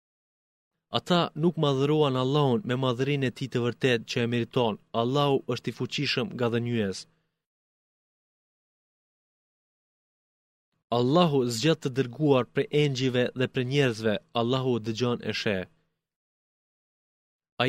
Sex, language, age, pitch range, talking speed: male, Greek, 30-49, 120-145 Hz, 115 wpm